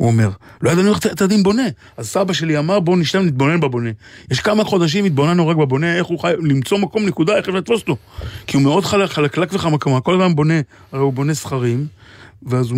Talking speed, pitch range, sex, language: 210 wpm, 125-175 Hz, male, Hebrew